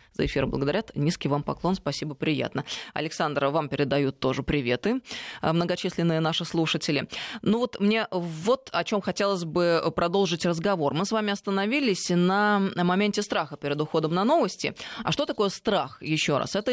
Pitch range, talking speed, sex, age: 155-200 Hz, 160 wpm, female, 20-39